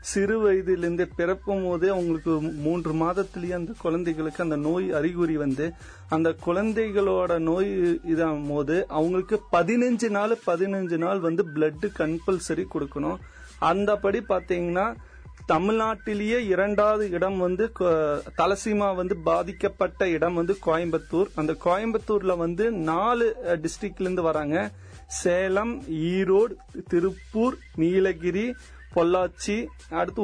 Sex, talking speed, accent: male, 105 wpm, native